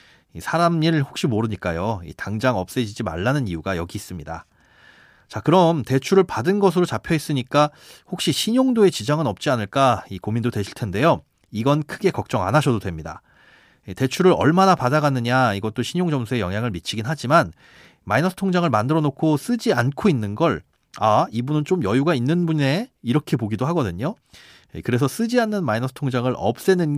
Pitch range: 105-165 Hz